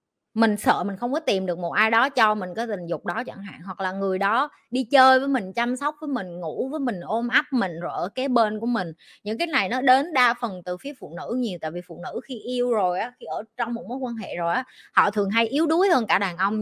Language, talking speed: Vietnamese, 290 wpm